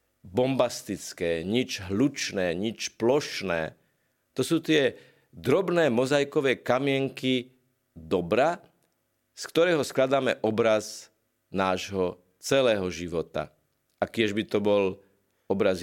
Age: 50-69